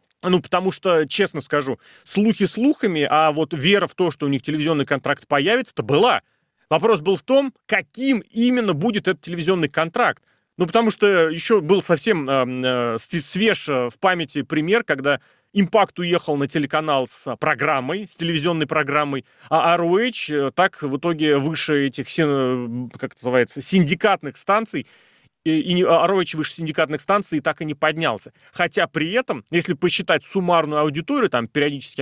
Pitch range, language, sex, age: 145-195 Hz, Russian, male, 30-49